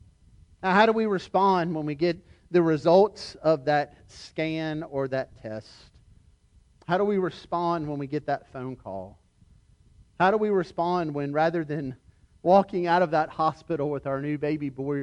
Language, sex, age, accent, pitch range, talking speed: English, male, 40-59, American, 125-190 Hz, 170 wpm